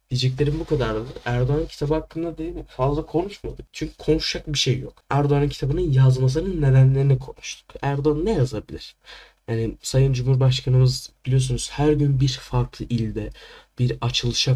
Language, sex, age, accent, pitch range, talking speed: Turkish, male, 10-29, native, 115-140 Hz, 140 wpm